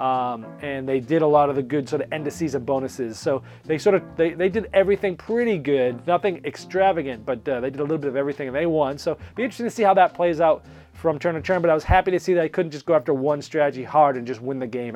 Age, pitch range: 40-59, 145-200 Hz